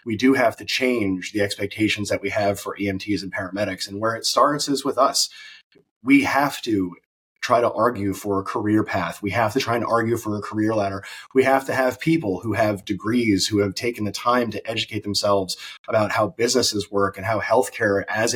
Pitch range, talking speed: 100-115 Hz, 210 wpm